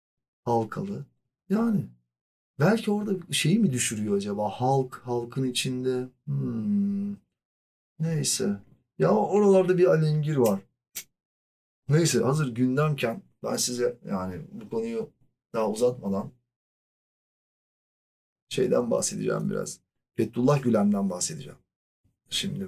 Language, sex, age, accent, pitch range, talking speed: Turkish, male, 40-59, native, 110-170 Hz, 95 wpm